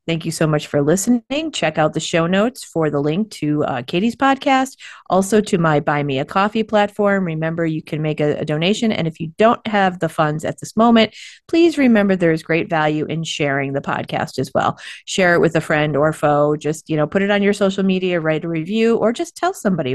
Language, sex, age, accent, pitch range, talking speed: English, female, 30-49, American, 150-205 Hz, 235 wpm